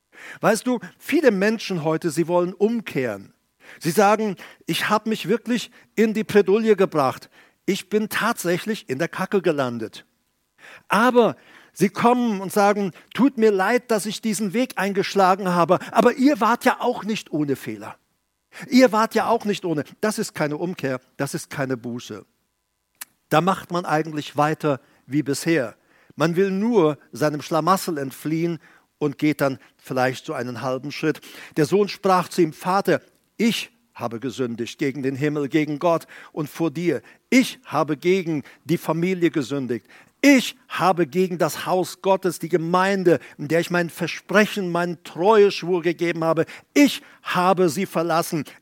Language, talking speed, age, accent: German, 155 wpm, 50-69, German